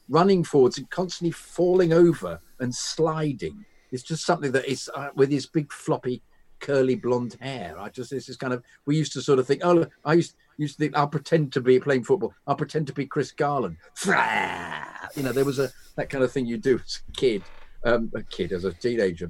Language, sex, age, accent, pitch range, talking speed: English, male, 50-69, British, 120-160 Hz, 220 wpm